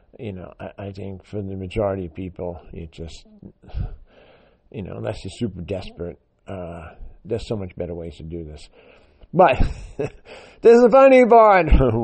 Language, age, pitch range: English, 50-69, 95-135 Hz